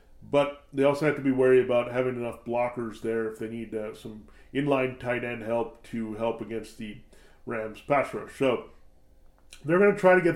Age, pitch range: 40-59, 115-140 Hz